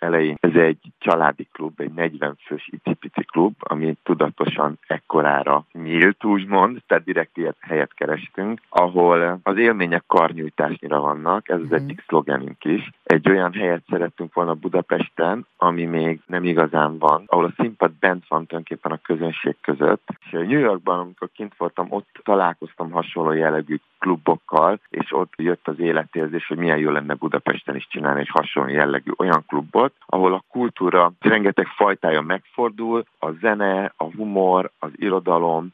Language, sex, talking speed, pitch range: Hungarian, male, 150 wpm, 80-90 Hz